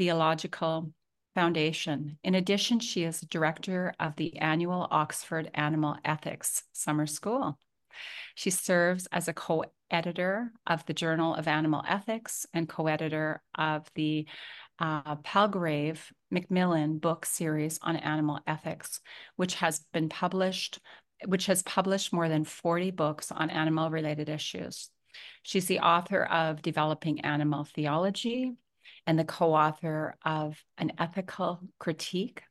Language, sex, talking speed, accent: English, female, 125 wpm, American